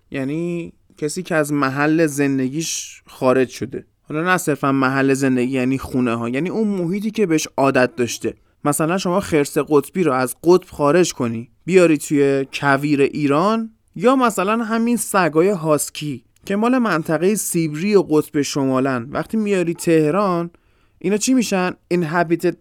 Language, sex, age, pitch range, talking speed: Persian, male, 20-39, 135-205 Hz, 145 wpm